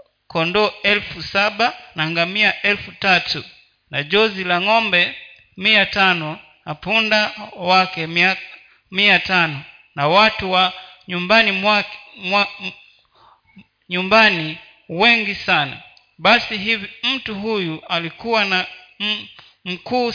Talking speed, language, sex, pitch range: 95 wpm, Swahili, male, 165-210 Hz